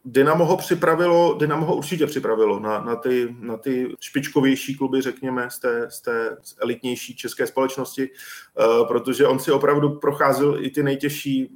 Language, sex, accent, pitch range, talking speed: Czech, male, native, 120-135 Hz, 145 wpm